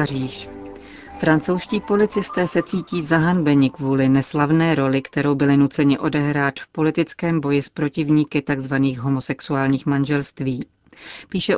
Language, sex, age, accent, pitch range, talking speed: Czech, female, 40-59, native, 145-165 Hz, 115 wpm